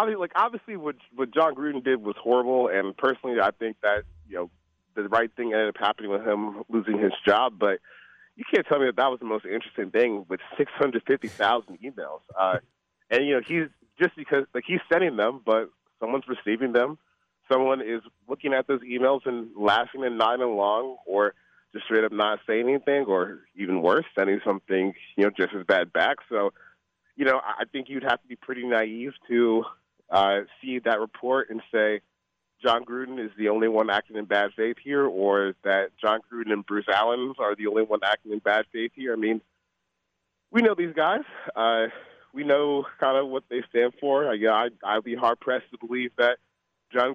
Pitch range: 105-130 Hz